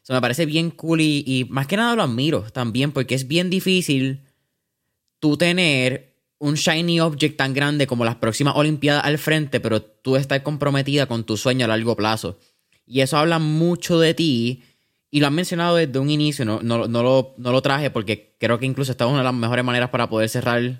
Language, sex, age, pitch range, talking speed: Spanish, male, 20-39, 120-150 Hz, 215 wpm